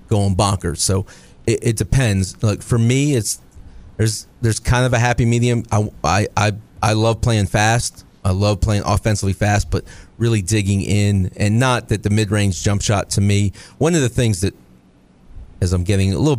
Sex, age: male, 40-59